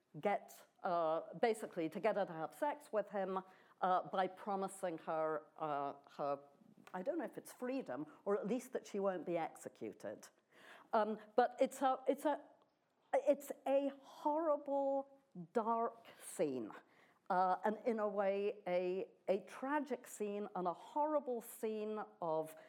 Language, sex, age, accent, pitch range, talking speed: English, female, 50-69, British, 170-235 Hz, 145 wpm